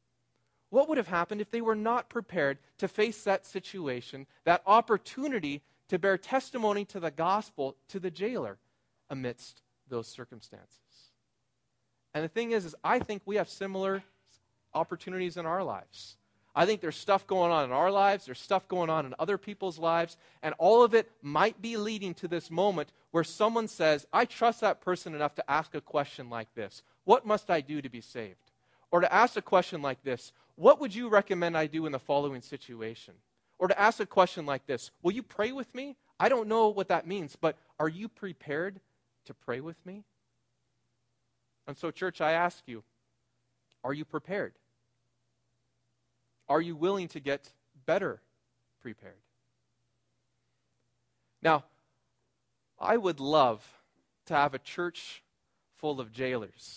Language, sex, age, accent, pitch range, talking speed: English, male, 40-59, American, 130-200 Hz, 170 wpm